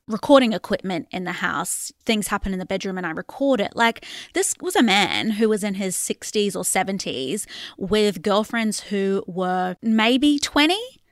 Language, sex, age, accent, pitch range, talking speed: English, female, 20-39, Australian, 195-245 Hz, 175 wpm